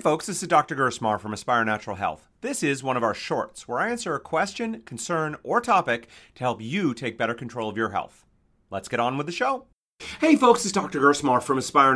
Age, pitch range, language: 30-49, 125-185 Hz, English